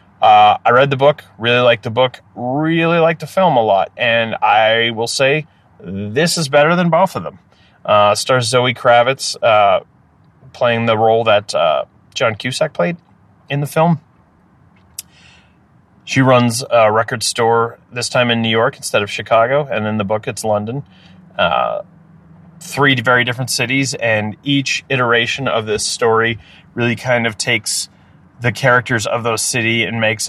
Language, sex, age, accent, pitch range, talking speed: English, male, 30-49, American, 110-135 Hz, 165 wpm